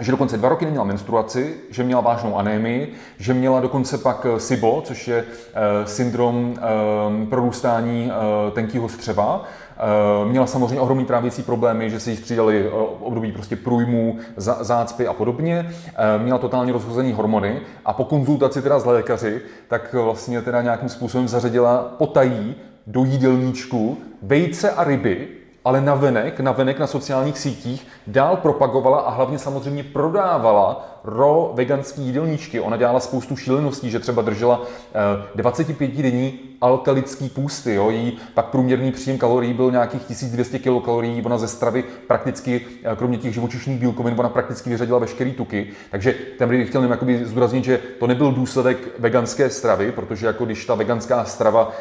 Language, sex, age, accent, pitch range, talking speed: Czech, male, 30-49, native, 115-130 Hz, 150 wpm